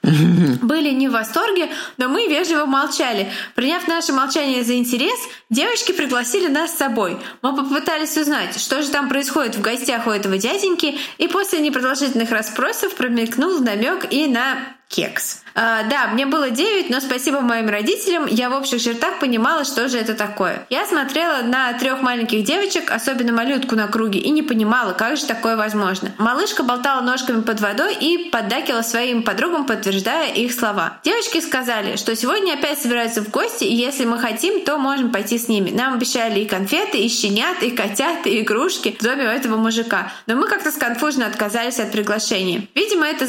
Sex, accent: female, native